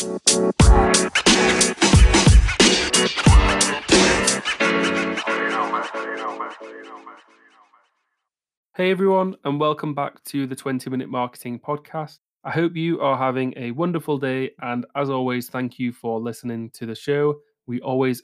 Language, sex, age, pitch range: English, male, 20-39, 120-145 Hz